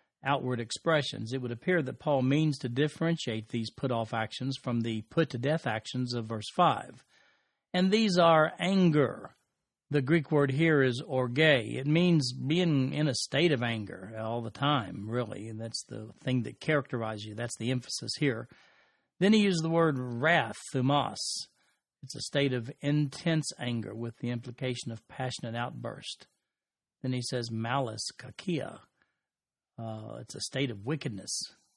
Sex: male